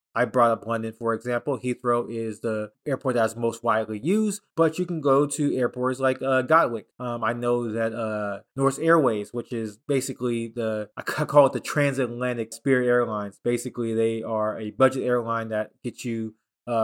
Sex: male